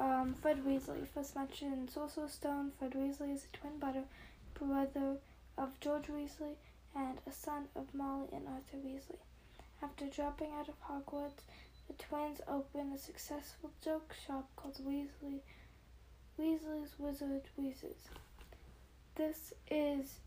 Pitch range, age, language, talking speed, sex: 260-290 Hz, 10-29, English, 135 wpm, female